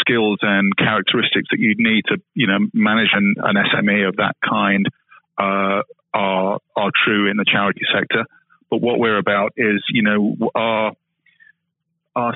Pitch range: 105-165 Hz